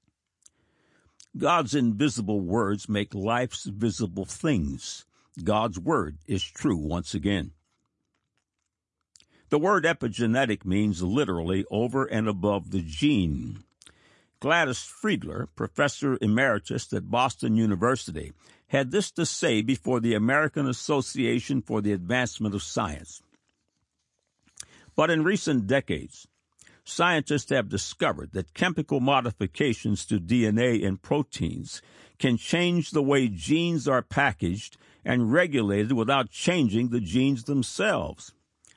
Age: 60-79